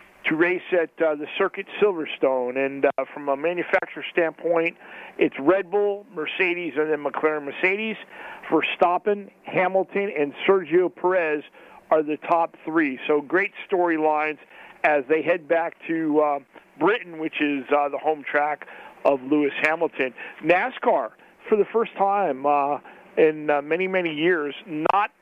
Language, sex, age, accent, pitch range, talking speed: English, male, 50-69, American, 155-200 Hz, 150 wpm